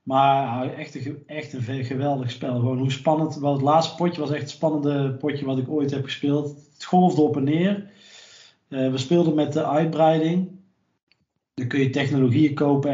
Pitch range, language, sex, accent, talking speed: 125-145 Hz, Dutch, male, Dutch, 180 wpm